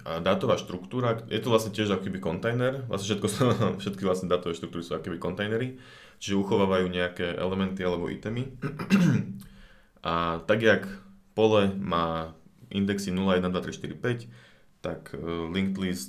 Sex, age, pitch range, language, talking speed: male, 20-39, 90-110 Hz, Slovak, 140 wpm